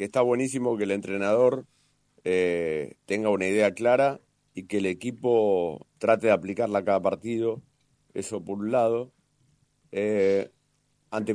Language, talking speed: Spanish, 135 wpm